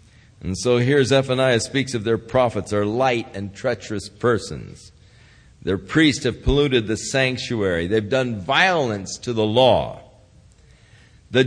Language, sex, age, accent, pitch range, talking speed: English, male, 50-69, American, 110-150 Hz, 135 wpm